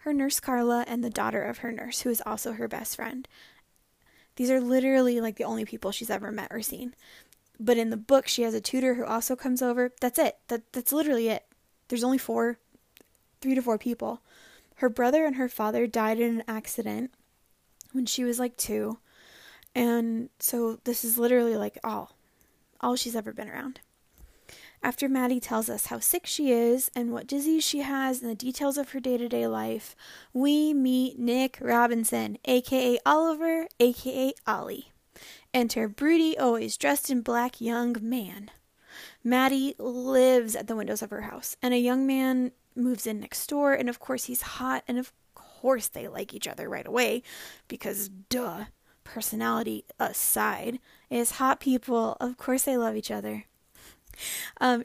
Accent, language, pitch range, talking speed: American, English, 225-260 Hz, 175 wpm